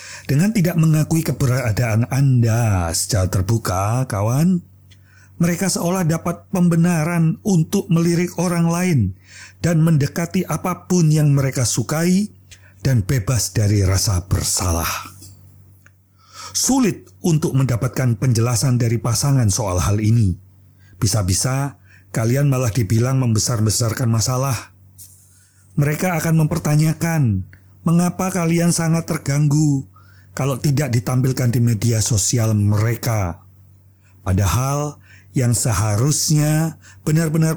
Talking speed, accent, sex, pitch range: 95 wpm, native, male, 100-150 Hz